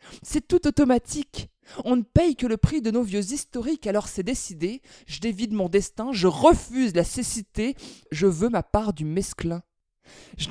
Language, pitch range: French, 185-230 Hz